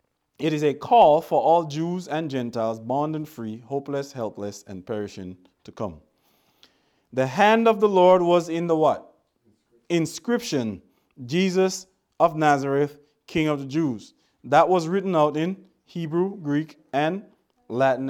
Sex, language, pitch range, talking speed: male, English, 115-160 Hz, 145 wpm